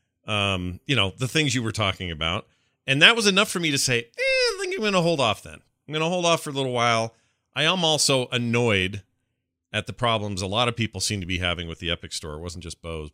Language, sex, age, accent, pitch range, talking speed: English, male, 40-59, American, 85-115 Hz, 265 wpm